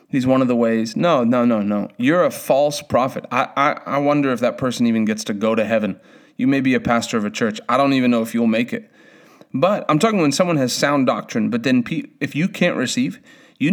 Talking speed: 245 wpm